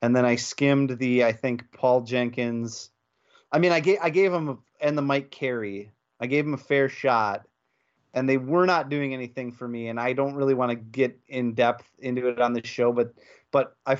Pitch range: 120-145 Hz